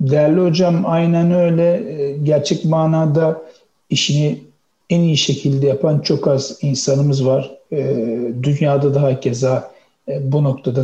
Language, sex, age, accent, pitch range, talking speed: Turkish, male, 60-79, native, 140-170 Hz, 115 wpm